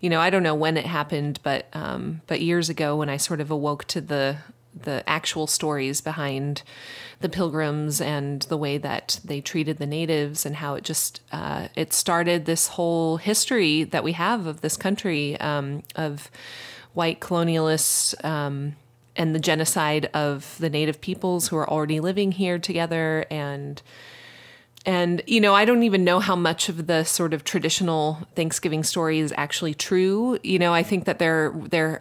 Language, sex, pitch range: English, female, 145-175 Hz